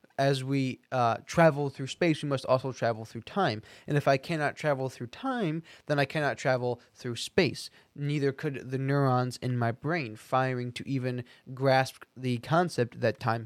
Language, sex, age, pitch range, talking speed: English, male, 20-39, 125-155 Hz, 180 wpm